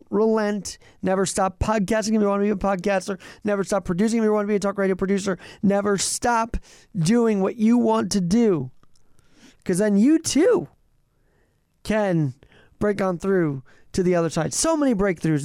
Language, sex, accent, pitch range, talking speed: English, male, American, 160-205 Hz, 180 wpm